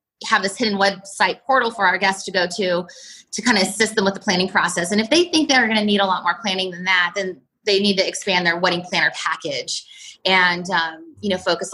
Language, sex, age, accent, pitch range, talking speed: English, female, 20-39, American, 180-215 Hz, 245 wpm